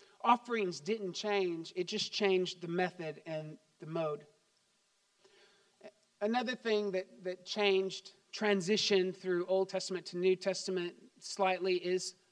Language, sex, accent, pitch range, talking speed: English, male, American, 185-205 Hz, 120 wpm